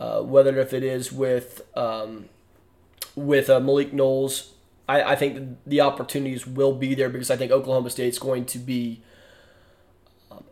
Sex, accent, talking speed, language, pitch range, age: male, American, 165 wpm, English, 125-145 Hz, 20-39